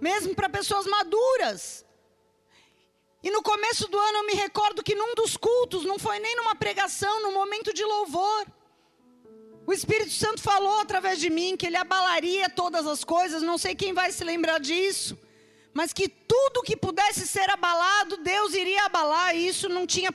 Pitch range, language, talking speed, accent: 320-400 Hz, Portuguese, 175 wpm, Brazilian